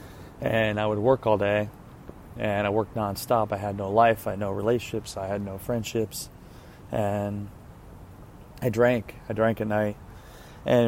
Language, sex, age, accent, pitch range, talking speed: English, male, 20-39, American, 100-115 Hz, 165 wpm